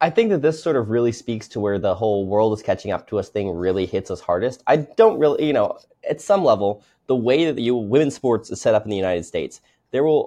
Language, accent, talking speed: English, American, 270 wpm